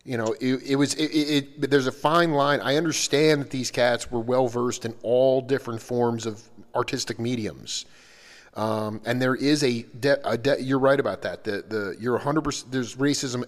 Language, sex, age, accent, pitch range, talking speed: English, male, 40-59, American, 115-145 Hz, 185 wpm